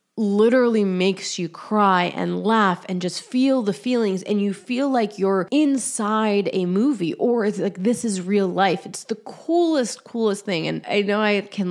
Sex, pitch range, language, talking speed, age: female, 175-220 Hz, English, 185 wpm, 20-39